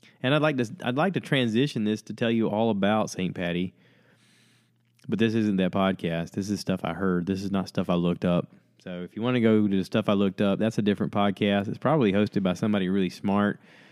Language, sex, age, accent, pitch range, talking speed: English, male, 20-39, American, 90-110 Hz, 240 wpm